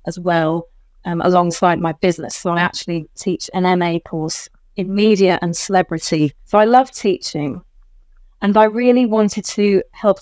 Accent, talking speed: British, 160 wpm